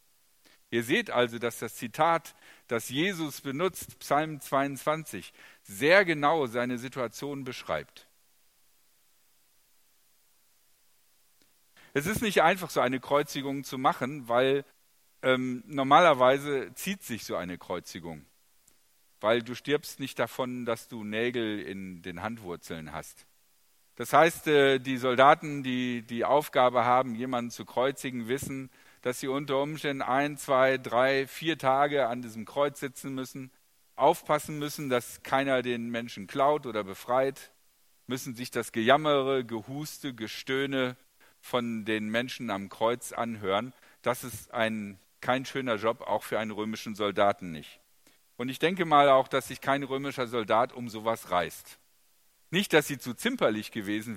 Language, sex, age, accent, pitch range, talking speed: German, male, 50-69, German, 115-140 Hz, 135 wpm